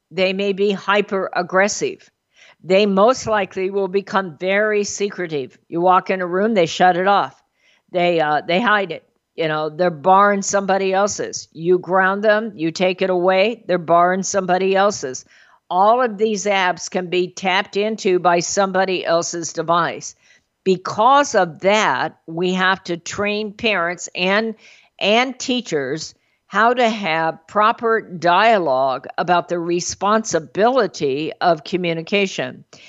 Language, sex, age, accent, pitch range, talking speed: English, female, 50-69, American, 170-205 Hz, 135 wpm